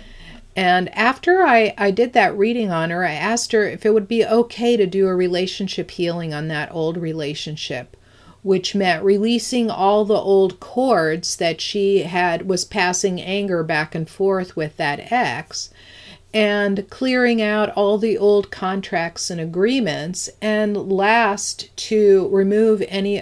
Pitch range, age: 175-215 Hz, 50-69